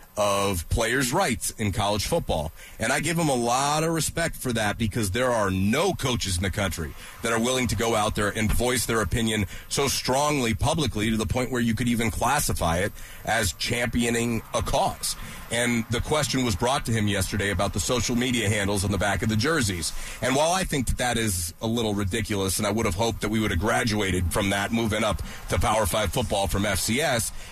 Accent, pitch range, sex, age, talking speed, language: American, 105-130 Hz, male, 30-49, 220 wpm, English